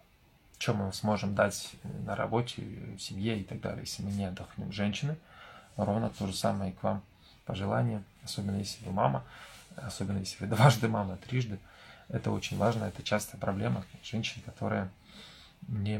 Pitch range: 100-120 Hz